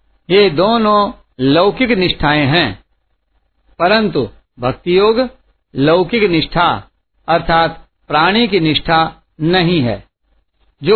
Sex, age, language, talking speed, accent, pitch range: male, 50-69, Hindi, 90 wpm, native, 140-195 Hz